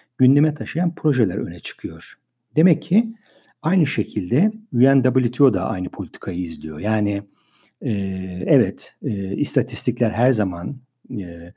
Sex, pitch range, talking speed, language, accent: male, 105-160 Hz, 115 wpm, Turkish, native